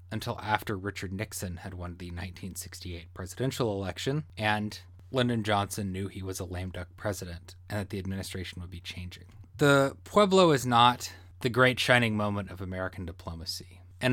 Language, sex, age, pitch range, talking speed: English, male, 20-39, 90-120 Hz, 165 wpm